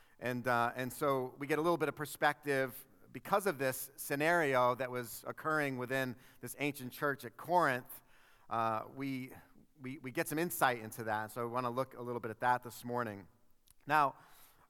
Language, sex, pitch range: English, male, 130-160 Hz